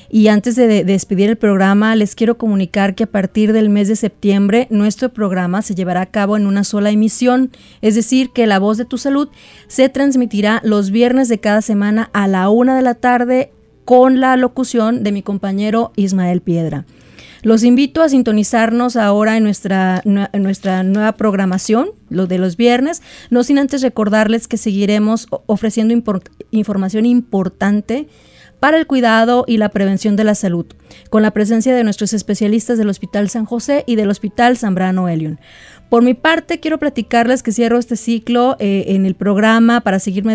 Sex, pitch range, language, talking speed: female, 200-245 Hz, Spanish, 175 wpm